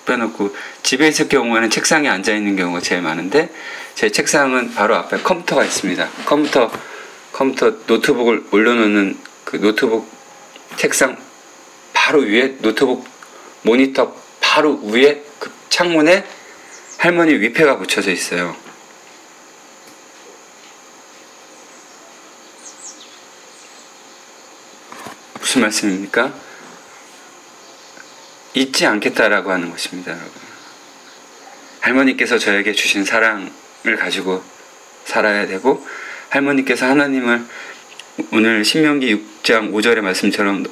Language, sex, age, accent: Korean, male, 40-59, native